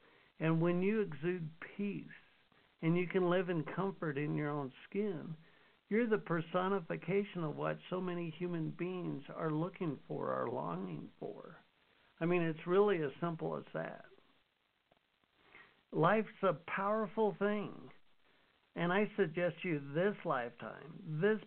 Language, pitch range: English, 160-205 Hz